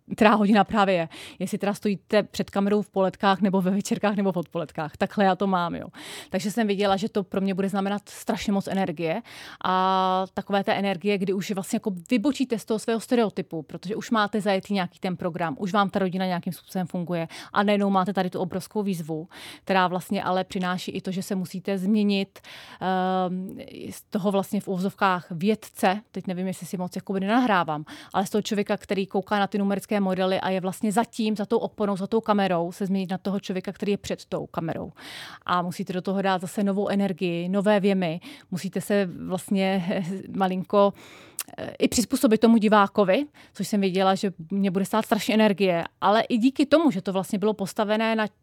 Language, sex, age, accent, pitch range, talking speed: Czech, female, 30-49, native, 185-210 Hz, 200 wpm